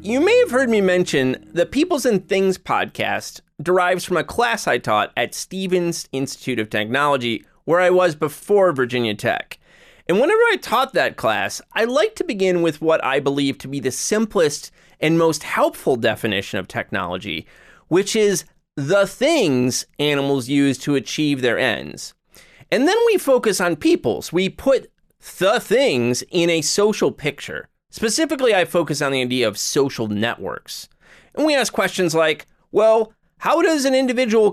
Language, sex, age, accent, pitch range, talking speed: English, male, 30-49, American, 135-215 Hz, 165 wpm